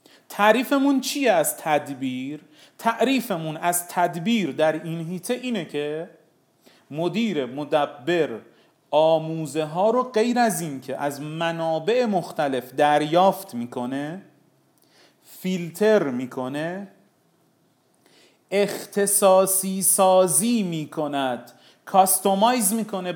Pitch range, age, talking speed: 155-205 Hz, 30-49, 85 wpm